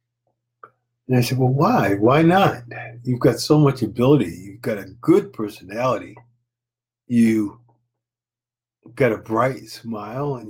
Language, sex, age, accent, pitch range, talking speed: English, male, 50-69, American, 115-135 Hz, 130 wpm